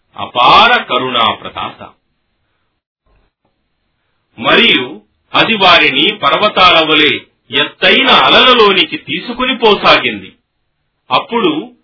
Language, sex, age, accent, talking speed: Telugu, male, 40-59, native, 50 wpm